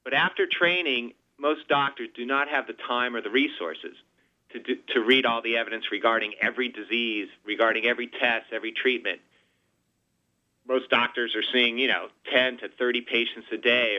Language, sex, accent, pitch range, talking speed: English, male, American, 115-135 Hz, 165 wpm